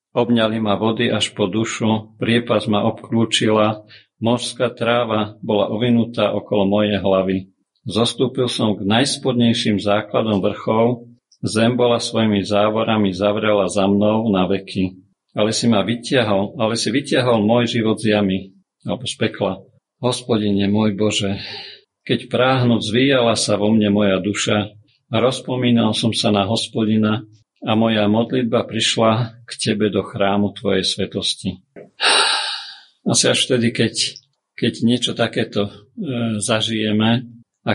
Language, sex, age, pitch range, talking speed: Slovak, male, 50-69, 105-120 Hz, 130 wpm